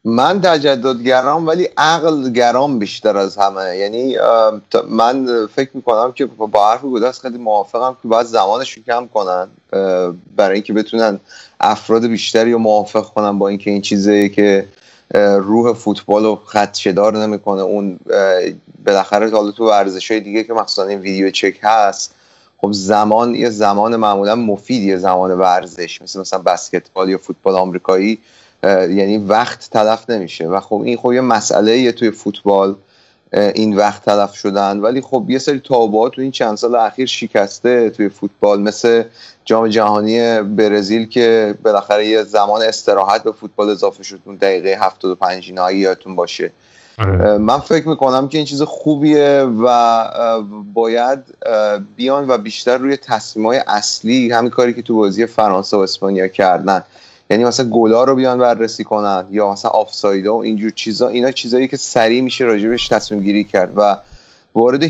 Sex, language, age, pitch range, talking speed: male, Persian, 30-49, 100-120 Hz, 155 wpm